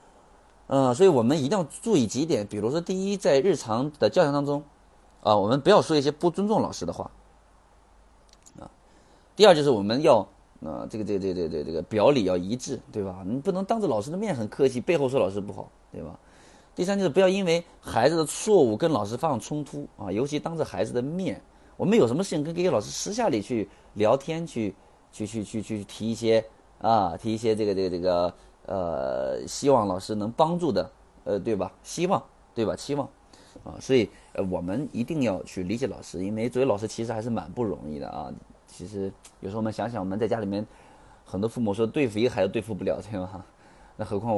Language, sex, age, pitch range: Chinese, male, 30-49, 105-155 Hz